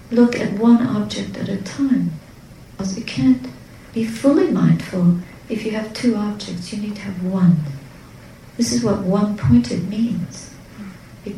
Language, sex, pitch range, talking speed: English, female, 180-225 Hz, 155 wpm